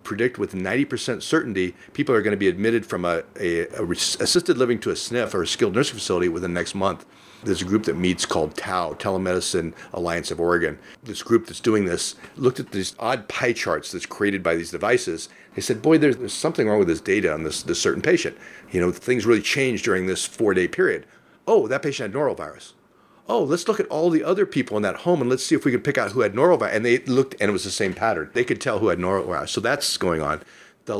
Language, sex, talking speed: English, male, 245 wpm